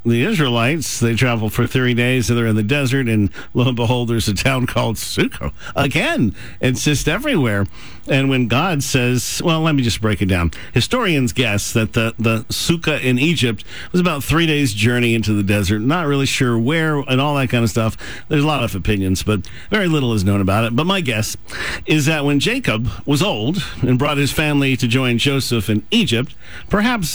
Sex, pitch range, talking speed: male, 115-145 Hz, 205 wpm